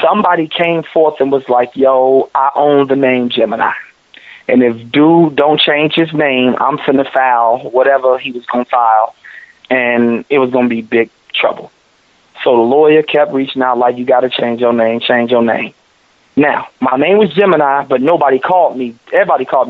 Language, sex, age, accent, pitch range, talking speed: English, male, 30-49, American, 130-180 Hz, 185 wpm